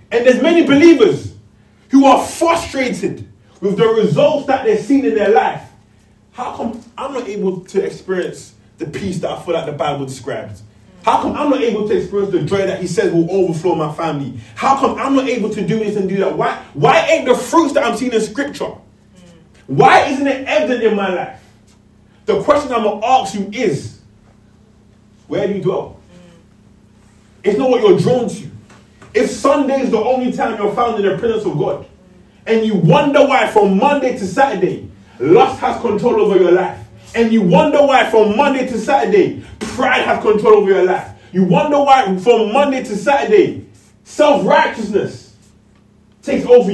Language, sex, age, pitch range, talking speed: English, male, 20-39, 175-270 Hz, 185 wpm